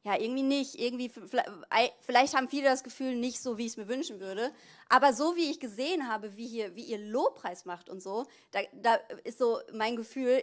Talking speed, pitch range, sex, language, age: 220 wpm, 215-270 Hz, female, German, 30-49